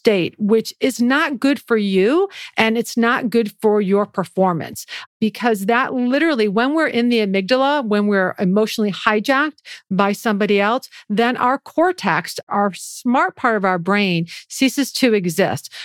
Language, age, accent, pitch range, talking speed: English, 40-59, American, 205-265 Hz, 155 wpm